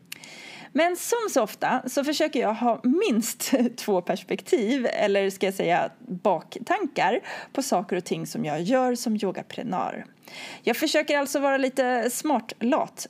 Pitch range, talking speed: 205-285 Hz, 140 wpm